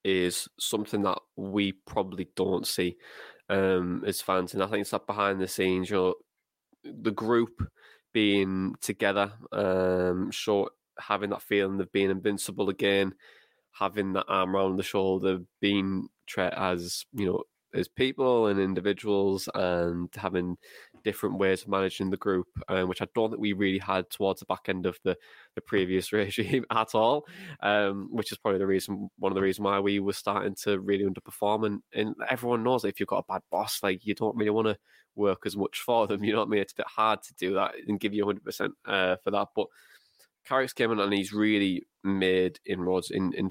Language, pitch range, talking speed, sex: English, 95-105 Hz, 200 wpm, male